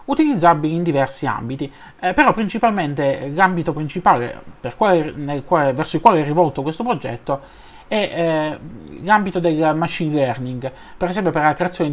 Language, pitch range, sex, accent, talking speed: Italian, 135-190 Hz, male, native, 155 wpm